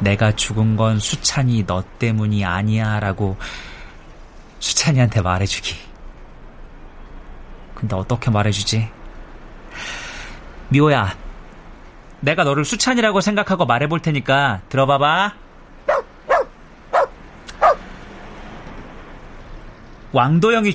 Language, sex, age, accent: Korean, male, 30-49, native